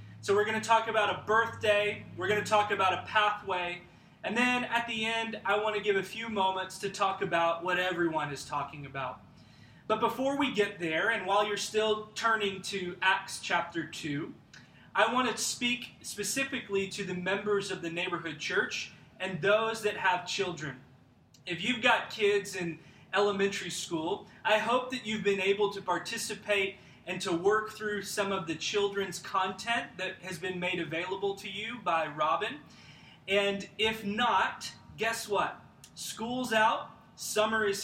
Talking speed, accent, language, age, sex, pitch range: 165 wpm, American, English, 20-39, male, 180-215 Hz